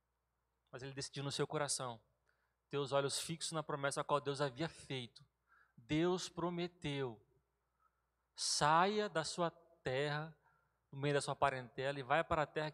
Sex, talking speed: male, 155 wpm